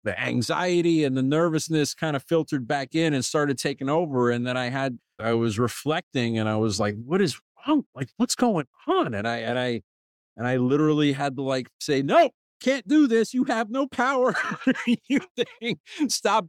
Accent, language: American, English